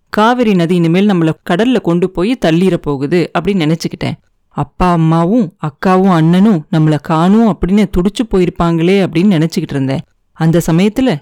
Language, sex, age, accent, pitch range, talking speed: Tamil, female, 30-49, native, 155-210 Hz, 125 wpm